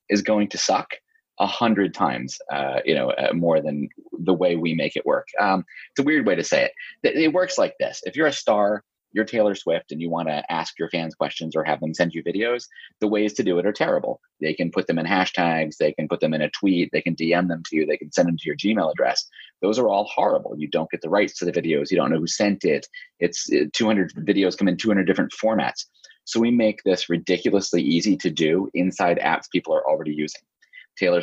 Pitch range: 85-130 Hz